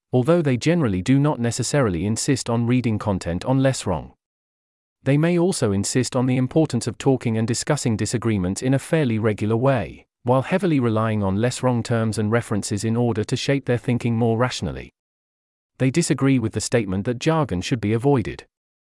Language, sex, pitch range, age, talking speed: English, male, 110-140 Hz, 40-59, 180 wpm